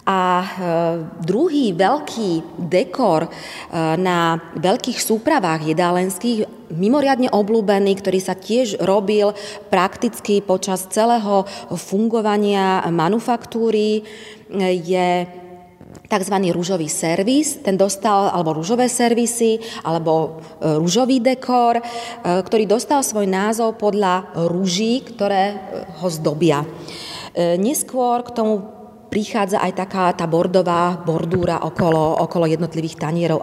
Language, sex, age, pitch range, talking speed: Slovak, female, 30-49, 175-225 Hz, 95 wpm